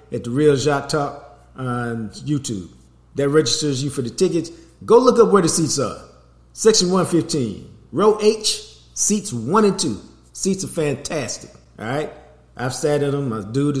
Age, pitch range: 50-69, 115-160 Hz